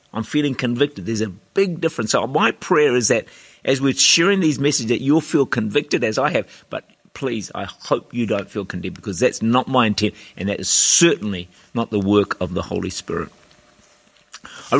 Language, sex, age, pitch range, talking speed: English, male, 50-69, 110-150 Hz, 200 wpm